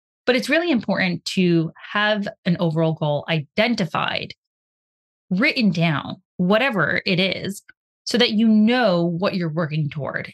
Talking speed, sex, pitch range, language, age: 135 wpm, female, 170-225 Hz, English, 20-39